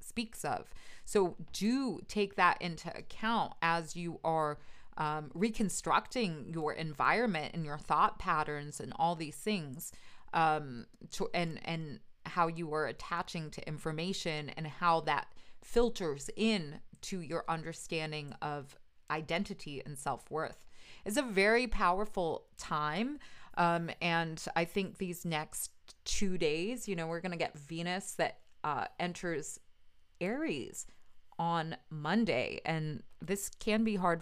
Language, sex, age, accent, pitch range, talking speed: English, female, 30-49, American, 155-195 Hz, 135 wpm